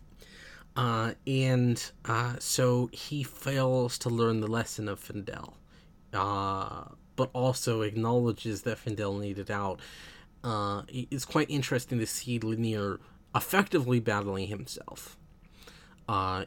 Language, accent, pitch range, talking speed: English, American, 105-130 Hz, 115 wpm